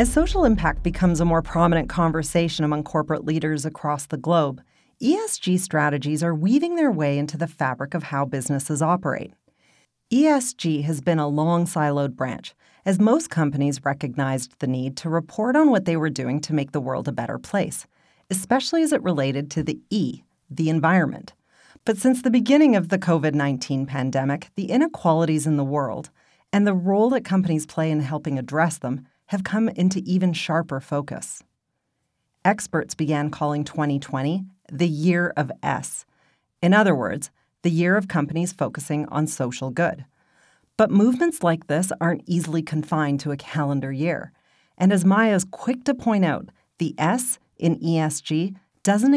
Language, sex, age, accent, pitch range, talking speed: English, female, 40-59, American, 150-195 Hz, 165 wpm